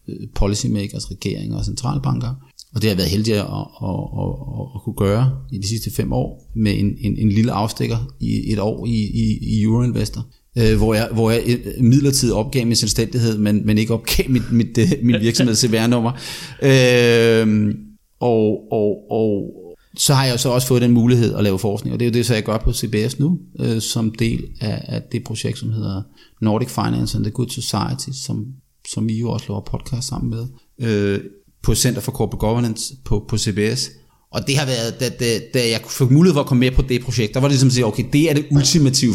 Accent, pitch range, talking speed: native, 110-130 Hz, 210 wpm